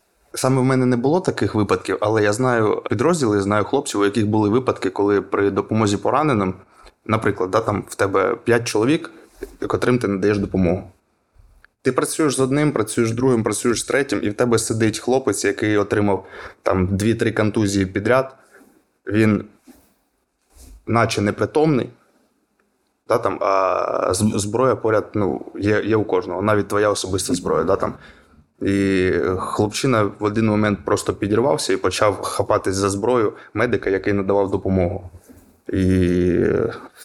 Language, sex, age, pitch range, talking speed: Ukrainian, male, 20-39, 95-120 Hz, 145 wpm